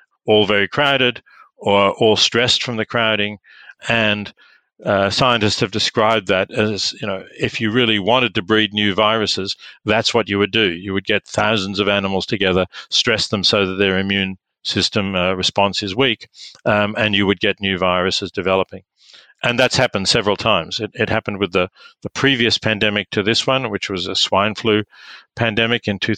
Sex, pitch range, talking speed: male, 95-115 Hz, 185 wpm